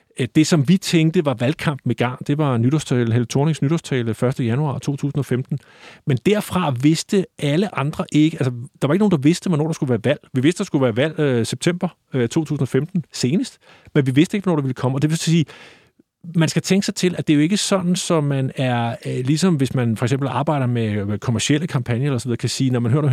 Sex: male